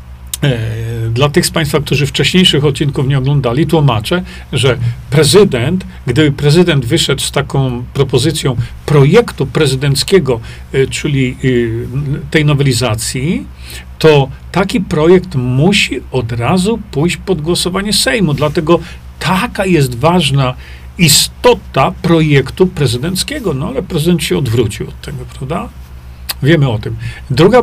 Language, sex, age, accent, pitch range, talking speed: Polish, male, 40-59, native, 115-165 Hz, 115 wpm